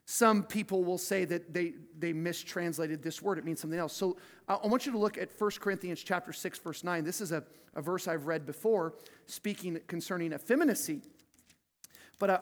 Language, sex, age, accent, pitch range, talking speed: English, male, 40-59, American, 170-205 Hz, 190 wpm